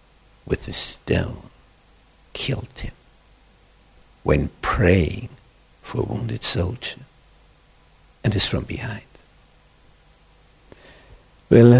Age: 60-79